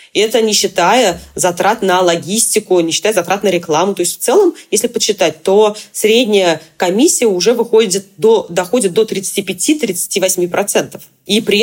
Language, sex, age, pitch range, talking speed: Russian, female, 20-39, 180-225 Hz, 145 wpm